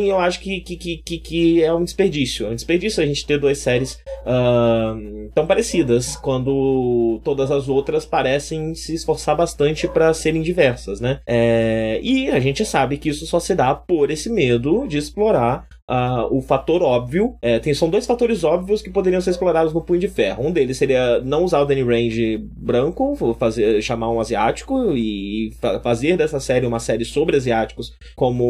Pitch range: 120-175 Hz